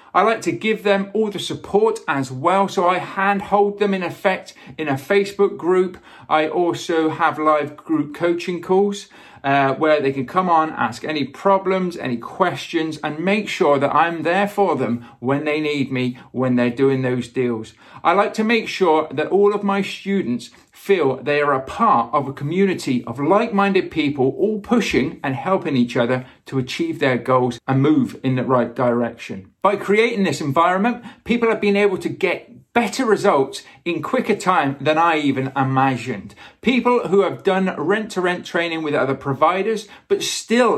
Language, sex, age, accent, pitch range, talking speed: English, male, 40-59, British, 140-200 Hz, 180 wpm